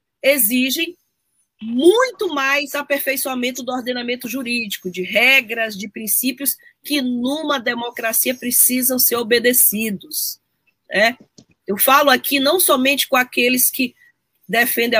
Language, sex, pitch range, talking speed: Portuguese, female, 240-310 Hz, 110 wpm